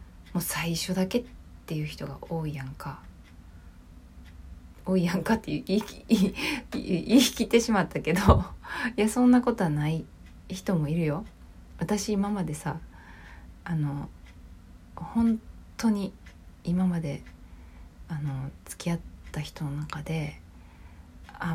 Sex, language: female, Japanese